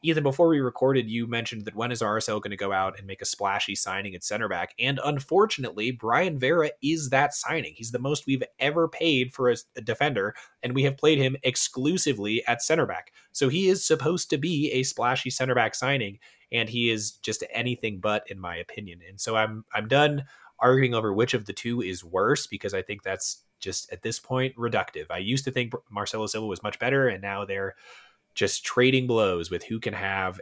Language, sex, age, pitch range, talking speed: English, male, 20-39, 100-130 Hz, 215 wpm